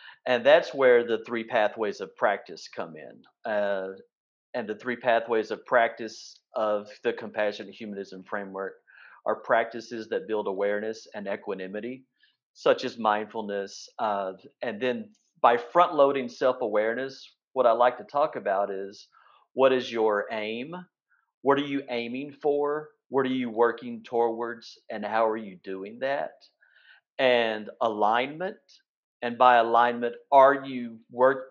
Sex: male